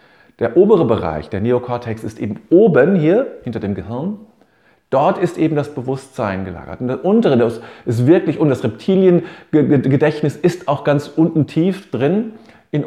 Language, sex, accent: German, male, German